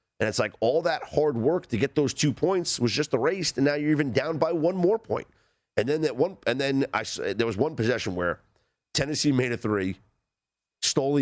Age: 40-59